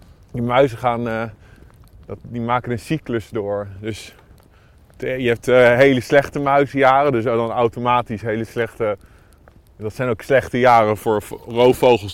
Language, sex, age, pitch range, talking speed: Dutch, male, 20-39, 110-135 Hz, 120 wpm